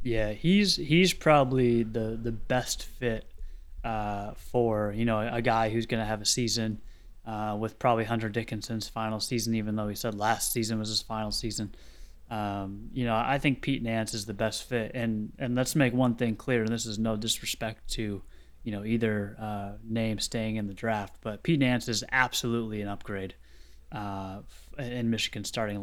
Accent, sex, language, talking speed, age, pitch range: American, male, English, 185 wpm, 20-39, 105-120 Hz